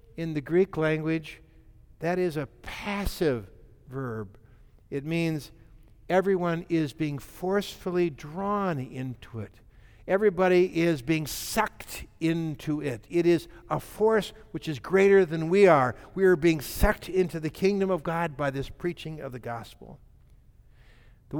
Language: English